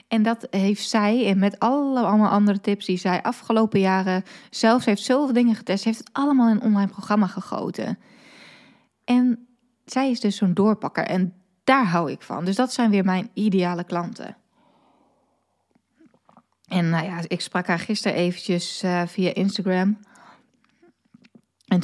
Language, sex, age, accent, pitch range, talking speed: Dutch, female, 20-39, Dutch, 190-235 Hz, 160 wpm